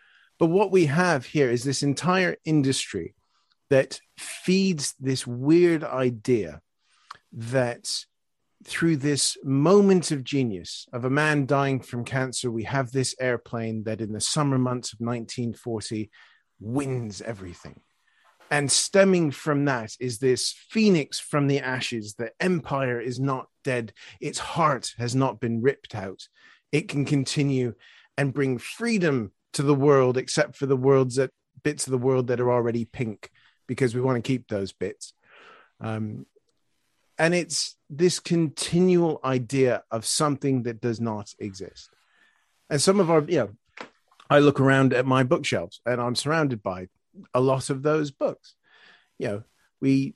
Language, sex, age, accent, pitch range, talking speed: English, male, 40-59, British, 125-150 Hz, 150 wpm